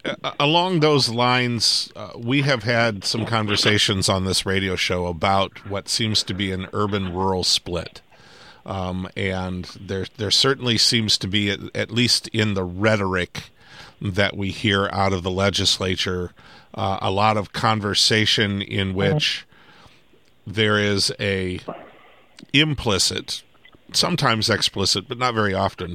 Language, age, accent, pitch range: English, 40-59, American, 95-110 Hz